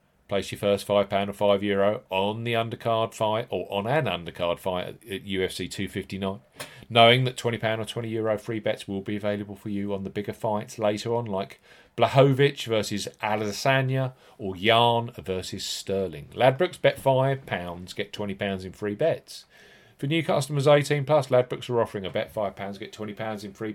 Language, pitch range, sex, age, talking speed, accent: English, 100-120 Hz, male, 40-59, 175 wpm, British